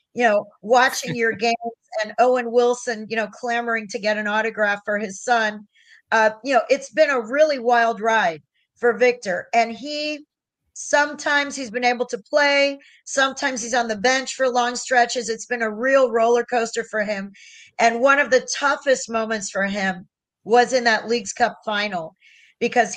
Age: 40-59